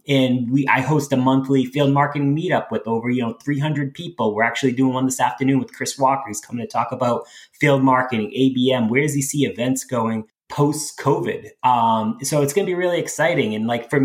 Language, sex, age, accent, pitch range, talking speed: English, male, 20-39, American, 120-145 Hz, 220 wpm